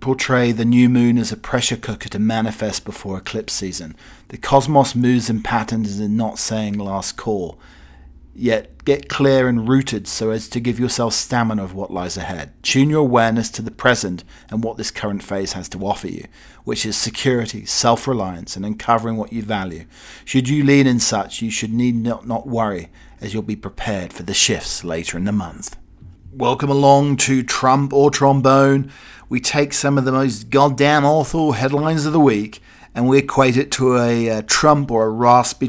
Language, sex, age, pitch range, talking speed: English, male, 40-59, 105-135 Hz, 190 wpm